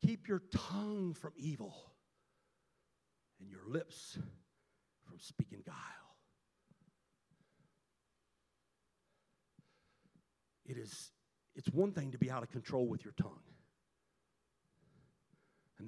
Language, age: English, 60-79